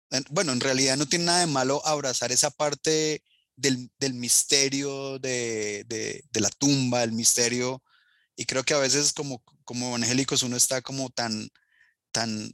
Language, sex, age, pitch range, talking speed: Spanish, male, 30-49, 120-145 Hz, 165 wpm